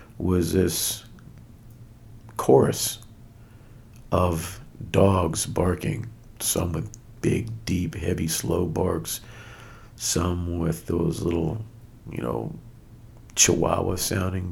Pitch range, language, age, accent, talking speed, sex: 95-115 Hz, English, 50-69, American, 85 wpm, male